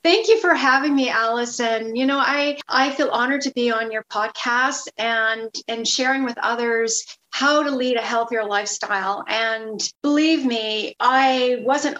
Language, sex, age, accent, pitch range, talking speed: English, female, 40-59, American, 220-285 Hz, 165 wpm